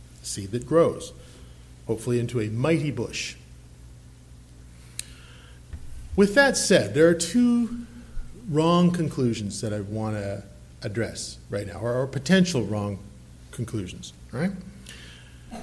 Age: 40-59